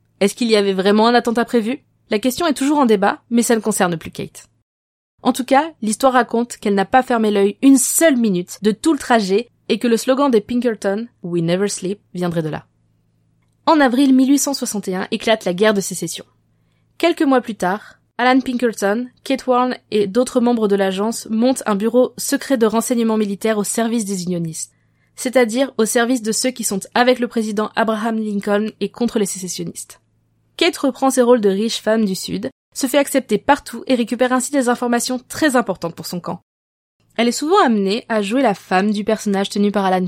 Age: 20-39